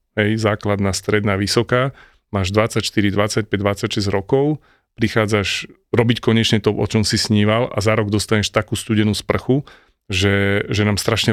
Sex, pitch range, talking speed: male, 105-110 Hz, 150 wpm